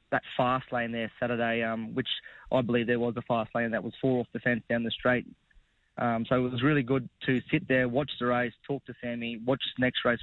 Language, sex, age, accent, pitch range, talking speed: English, male, 20-39, Australian, 115-130 Hz, 245 wpm